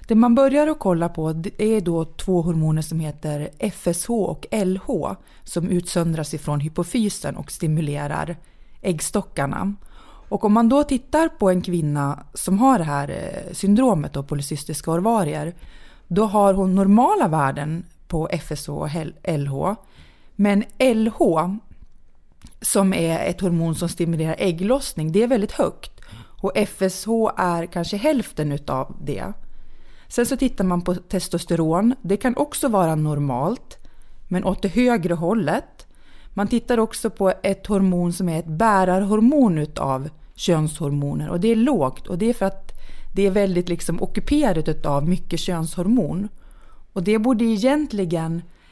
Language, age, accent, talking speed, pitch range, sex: English, 30-49, Swedish, 145 wpm, 165-215 Hz, female